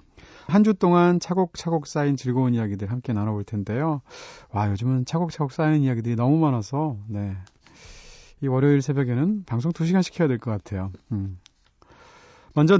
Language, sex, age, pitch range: Korean, male, 30-49, 115-160 Hz